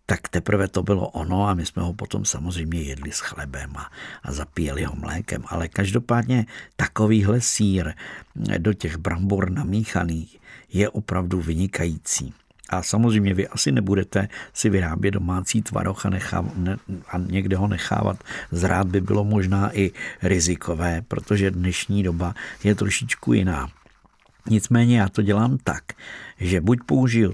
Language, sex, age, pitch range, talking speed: Czech, male, 50-69, 85-105 Hz, 145 wpm